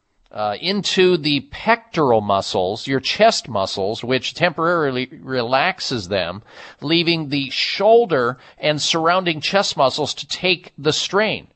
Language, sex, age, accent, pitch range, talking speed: English, male, 40-59, American, 125-165 Hz, 115 wpm